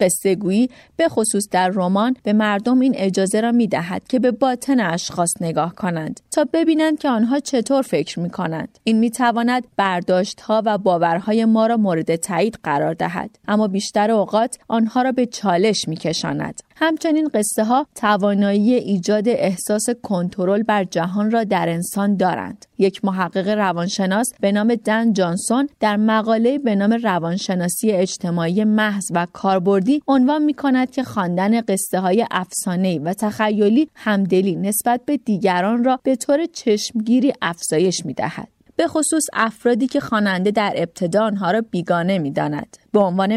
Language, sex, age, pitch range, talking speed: Persian, female, 30-49, 190-240 Hz, 140 wpm